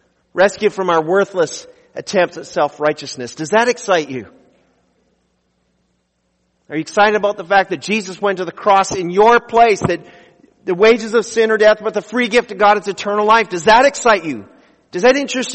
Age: 40-59